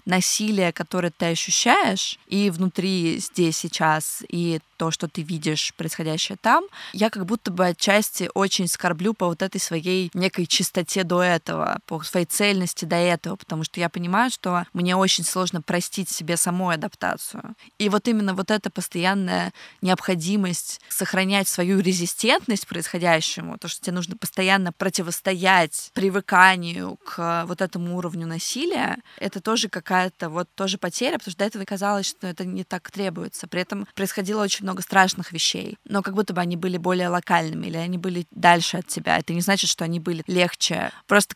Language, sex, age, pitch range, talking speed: Russian, female, 20-39, 175-200 Hz, 170 wpm